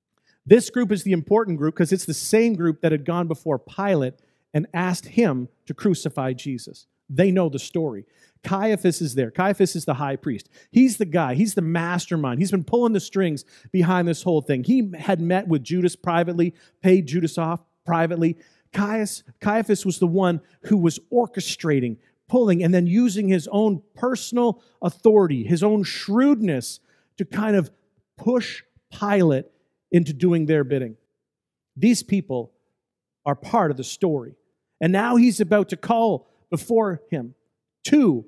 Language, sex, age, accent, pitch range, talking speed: English, male, 40-59, American, 155-205 Hz, 160 wpm